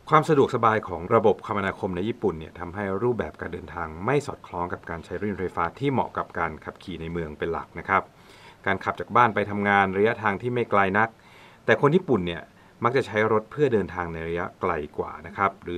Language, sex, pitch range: Thai, male, 90-115 Hz